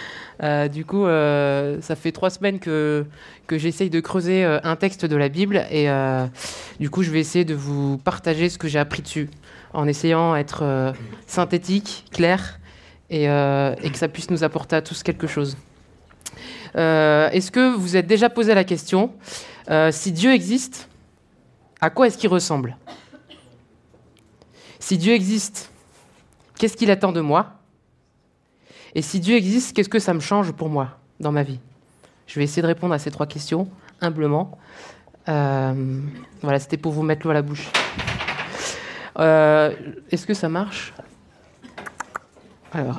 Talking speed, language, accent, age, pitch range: 165 wpm, French, French, 20-39, 145-185 Hz